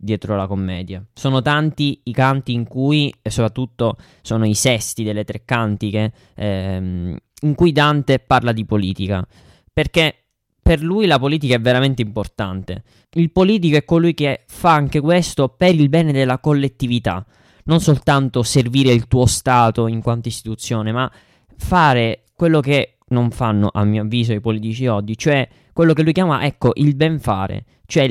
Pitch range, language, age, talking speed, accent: 110-145 Hz, Italian, 20-39, 160 wpm, native